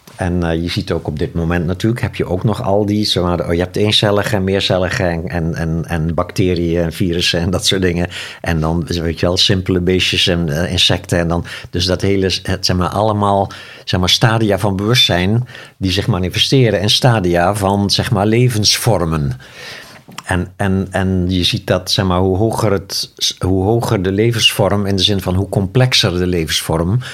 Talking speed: 175 wpm